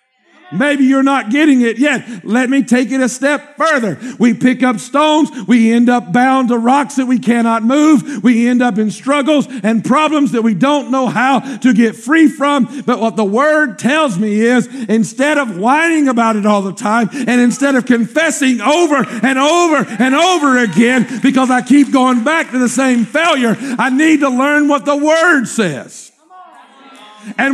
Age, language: 50-69, English